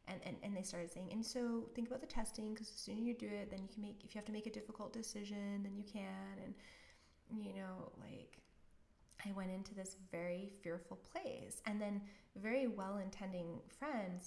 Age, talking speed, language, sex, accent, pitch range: 20-39, 215 wpm, English, female, American, 180-210 Hz